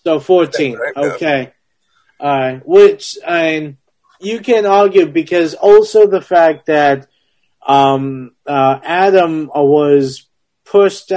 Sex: male